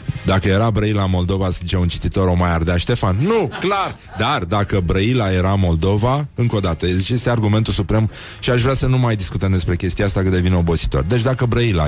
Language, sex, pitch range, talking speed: Romanian, male, 90-120 Hz, 205 wpm